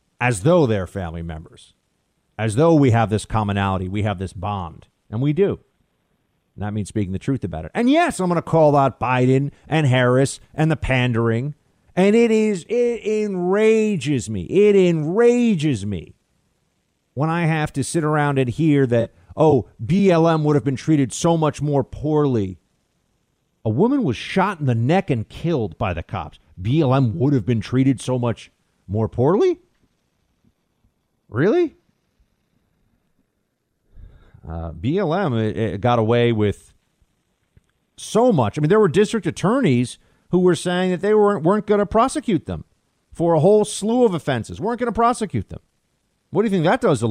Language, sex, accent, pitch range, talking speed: English, male, American, 105-170 Hz, 170 wpm